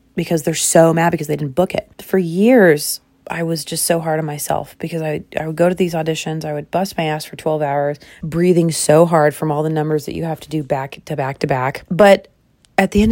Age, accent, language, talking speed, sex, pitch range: 30-49, American, English, 250 wpm, female, 155-195 Hz